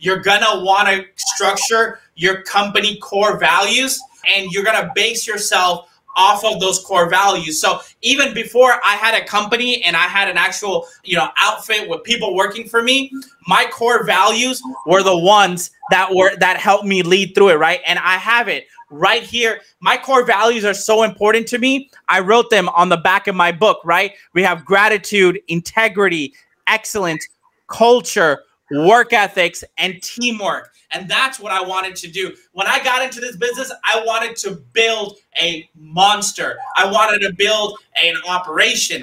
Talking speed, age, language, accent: 175 wpm, 20-39, English, American